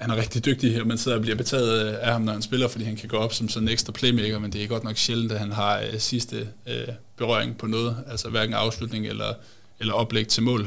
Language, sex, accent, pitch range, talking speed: Danish, male, native, 105-115 Hz, 260 wpm